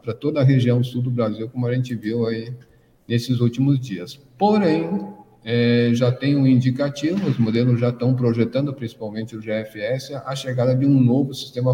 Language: Portuguese